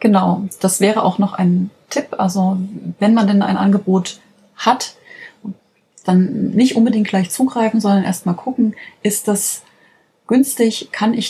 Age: 30-49